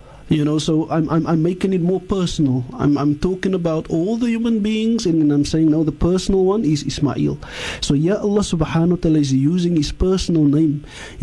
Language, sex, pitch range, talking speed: English, male, 145-190 Hz, 205 wpm